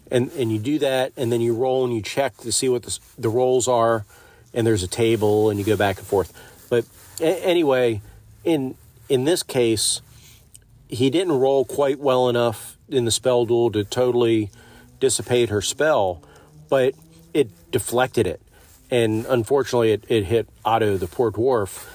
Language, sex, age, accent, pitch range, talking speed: English, male, 40-59, American, 105-120 Hz, 175 wpm